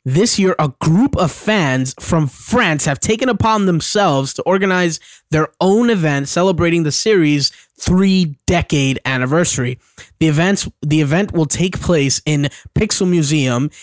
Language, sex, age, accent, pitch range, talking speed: English, male, 20-39, American, 140-180 Hz, 140 wpm